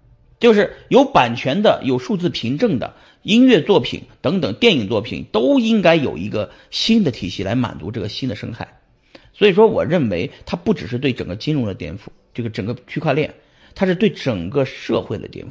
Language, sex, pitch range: Chinese, male, 120-195 Hz